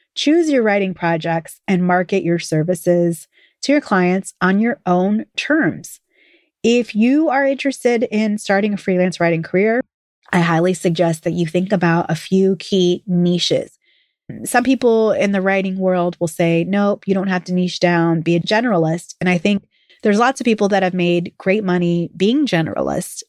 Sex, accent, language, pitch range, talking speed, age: female, American, English, 170-215 Hz, 175 wpm, 30-49